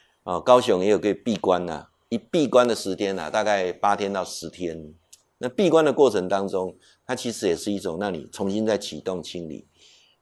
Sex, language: male, Chinese